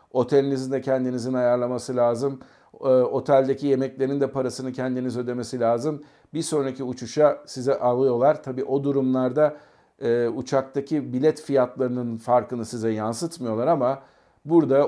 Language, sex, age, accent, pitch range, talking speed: Turkish, male, 50-69, native, 120-140 Hz, 115 wpm